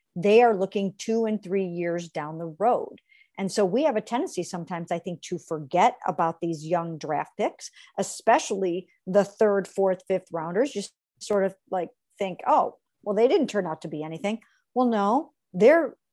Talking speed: 180 wpm